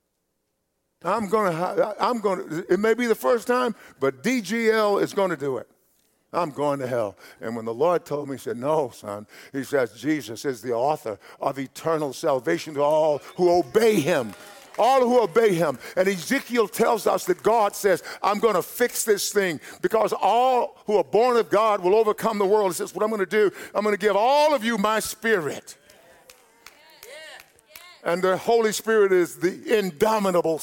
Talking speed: 190 wpm